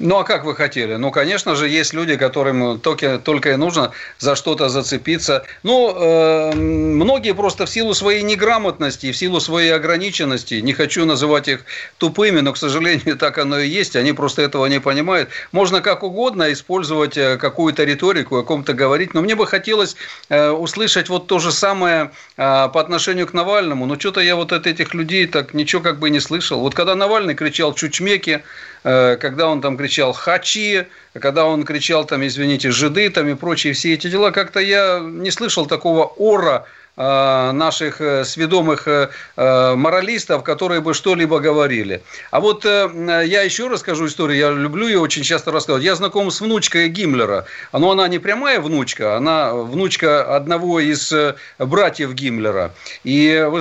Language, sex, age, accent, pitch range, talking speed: Russian, male, 50-69, native, 145-185 Hz, 165 wpm